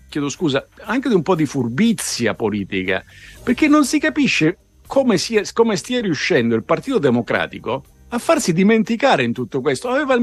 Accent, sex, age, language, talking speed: native, male, 50-69, Italian, 170 wpm